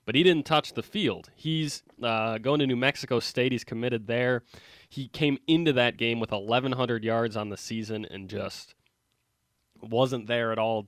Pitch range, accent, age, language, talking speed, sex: 110-135 Hz, American, 20-39, English, 180 wpm, male